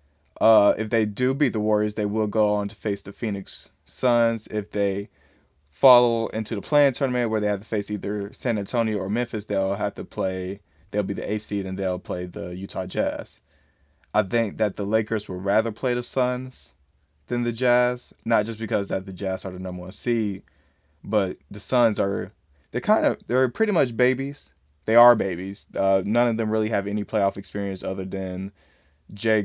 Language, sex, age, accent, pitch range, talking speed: English, male, 20-39, American, 90-115 Hz, 200 wpm